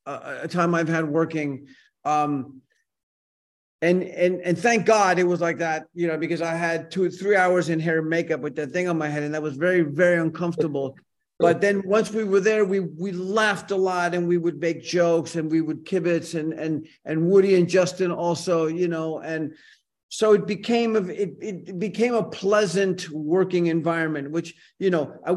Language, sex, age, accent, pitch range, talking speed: English, male, 50-69, American, 165-195 Hz, 200 wpm